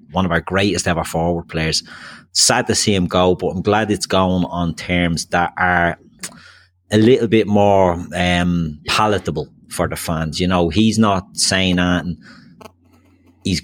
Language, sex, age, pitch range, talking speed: English, male, 30-49, 85-100 Hz, 165 wpm